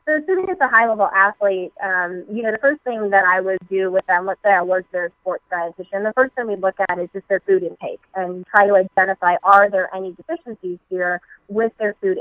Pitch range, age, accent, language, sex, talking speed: 185-205 Hz, 20-39, American, English, female, 240 wpm